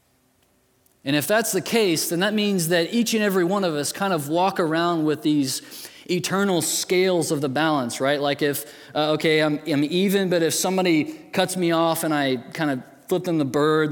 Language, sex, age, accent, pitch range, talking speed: English, male, 20-39, American, 145-195 Hz, 205 wpm